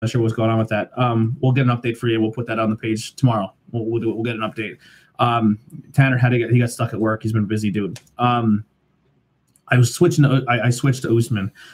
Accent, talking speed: American, 275 wpm